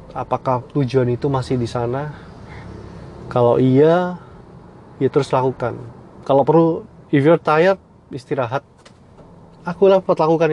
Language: Indonesian